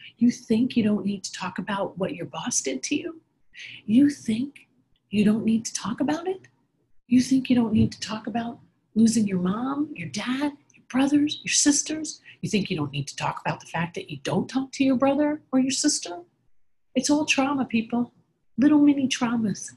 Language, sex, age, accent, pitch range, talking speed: English, female, 40-59, American, 170-250 Hz, 205 wpm